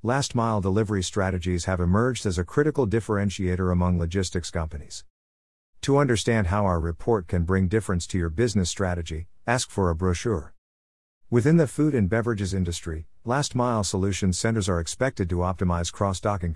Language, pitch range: English, 85-115 Hz